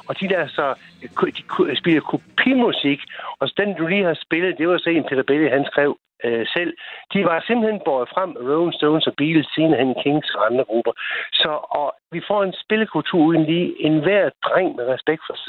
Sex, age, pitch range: male, 60-79, 125-175 Hz